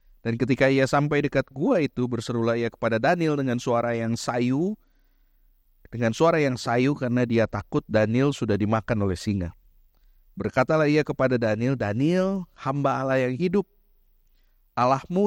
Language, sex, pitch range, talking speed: Indonesian, male, 110-140 Hz, 145 wpm